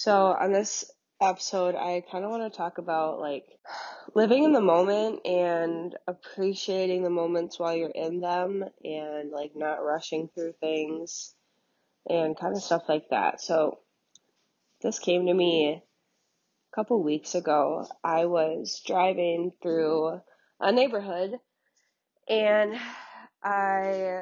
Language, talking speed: English, 130 wpm